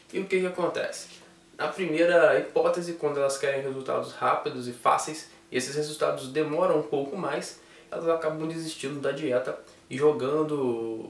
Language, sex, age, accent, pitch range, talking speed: Portuguese, male, 10-29, Brazilian, 130-160 Hz, 150 wpm